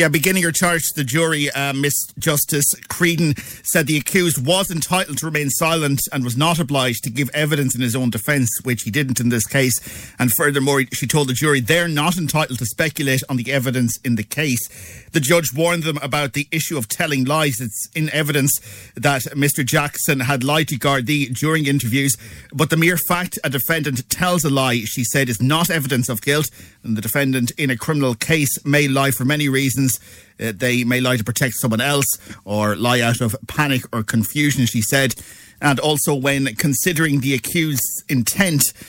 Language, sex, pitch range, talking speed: English, male, 125-155 Hz, 195 wpm